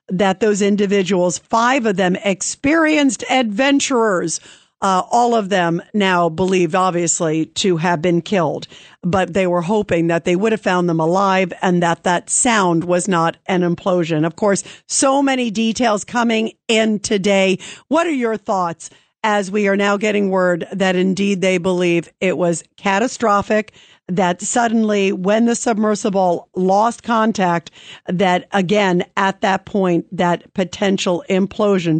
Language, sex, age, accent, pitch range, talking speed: English, female, 50-69, American, 180-220 Hz, 145 wpm